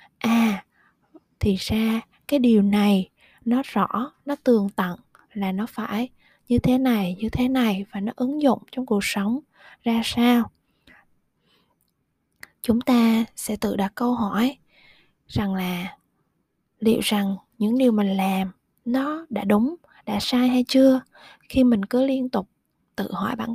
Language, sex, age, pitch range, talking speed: Vietnamese, female, 20-39, 195-240 Hz, 150 wpm